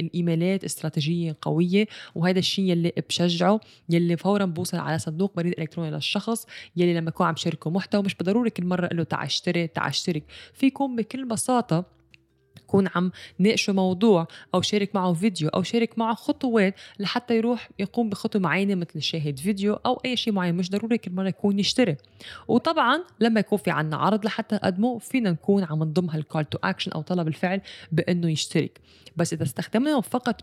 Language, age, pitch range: English, 20-39, 165-215 Hz